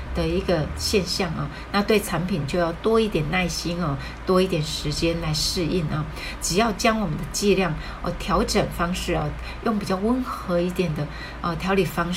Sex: female